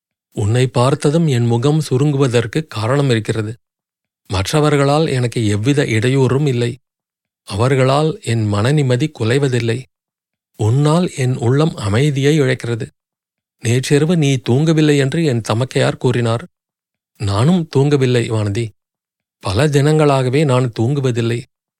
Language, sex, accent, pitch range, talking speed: Tamil, male, native, 115-145 Hz, 95 wpm